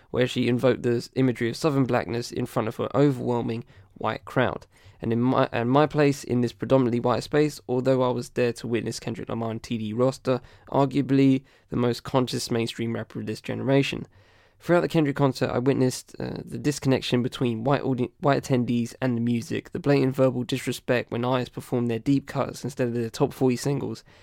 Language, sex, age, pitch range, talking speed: English, male, 10-29, 115-135 Hz, 195 wpm